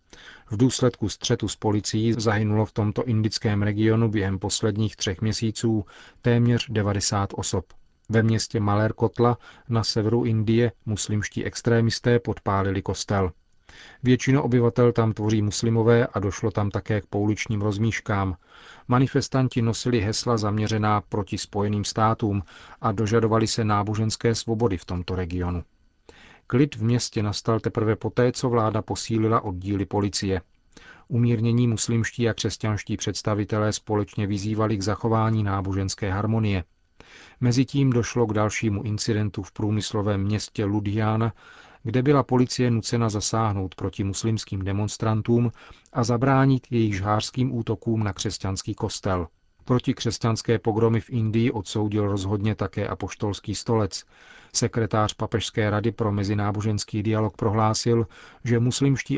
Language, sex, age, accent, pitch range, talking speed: Czech, male, 40-59, native, 100-115 Hz, 125 wpm